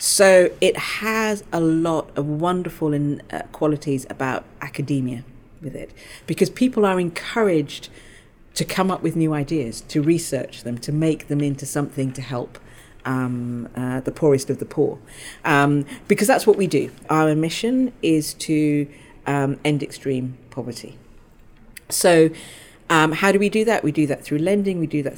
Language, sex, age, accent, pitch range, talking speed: English, female, 40-59, British, 135-180 Hz, 160 wpm